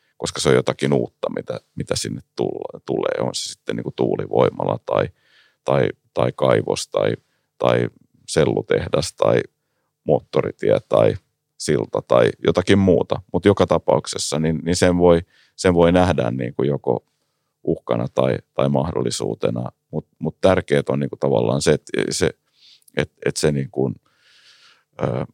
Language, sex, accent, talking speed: Finnish, male, native, 145 wpm